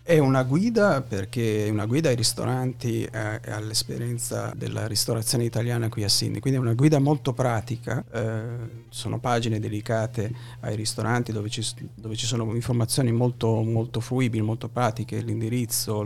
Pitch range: 110-120 Hz